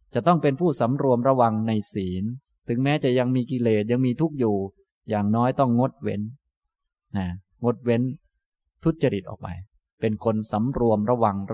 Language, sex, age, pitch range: Thai, male, 20-39, 105-135 Hz